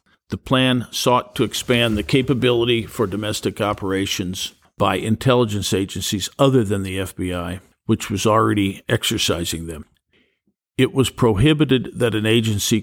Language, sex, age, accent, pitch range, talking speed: English, male, 50-69, American, 95-115 Hz, 130 wpm